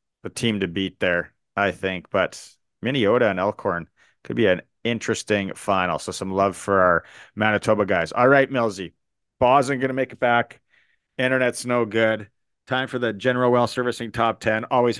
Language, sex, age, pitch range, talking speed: English, male, 30-49, 105-130 Hz, 175 wpm